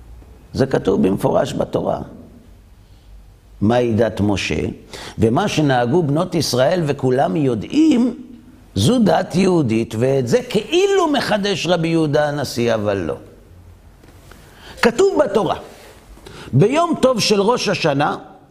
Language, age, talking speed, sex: Hebrew, 50-69, 105 wpm, male